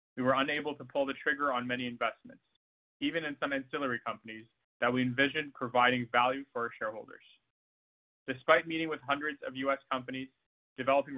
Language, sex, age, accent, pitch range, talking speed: English, male, 20-39, American, 125-140 Hz, 165 wpm